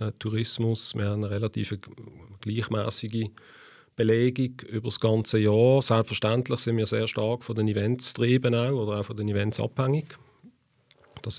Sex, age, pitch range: male, 40-59, 105-125 Hz